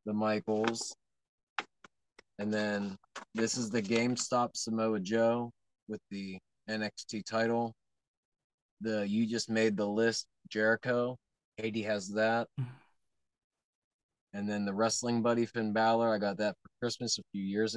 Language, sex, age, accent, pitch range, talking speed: English, male, 20-39, American, 100-115 Hz, 130 wpm